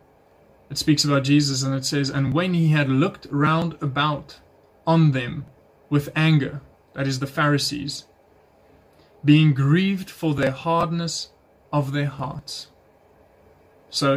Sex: male